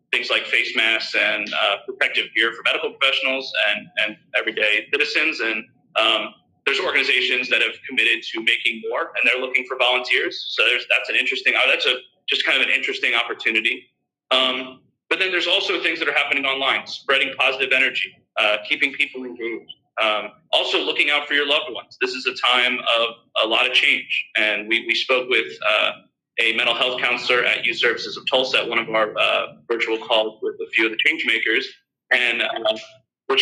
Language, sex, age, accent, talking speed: English, male, 30-49, American, 190 wpm